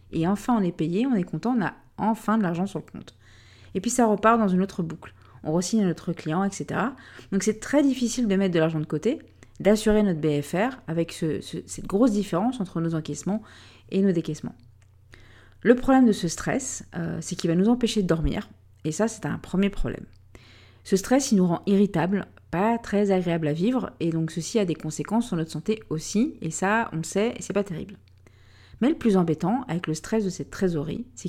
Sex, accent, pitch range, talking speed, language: female, French, 155-215 Hz, 215 wpm, French